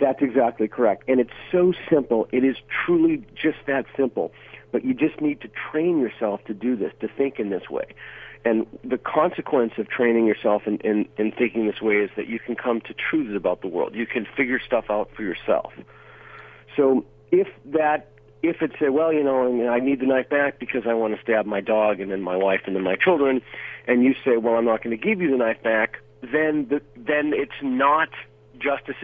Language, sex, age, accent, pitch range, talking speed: English, male, 50-69, American, 105-140 Hz, 215 wpm